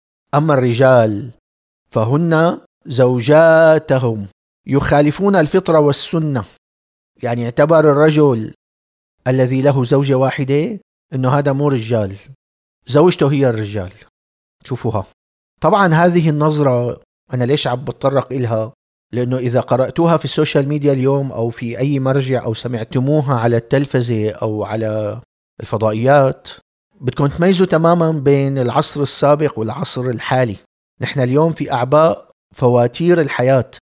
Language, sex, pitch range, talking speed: Arabic, male, 115-150 Hz, 110 wpm